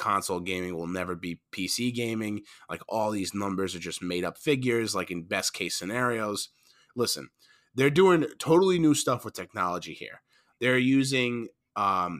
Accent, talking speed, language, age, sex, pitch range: American, 160 wpm, English, 30-49, male, 95-125 Hz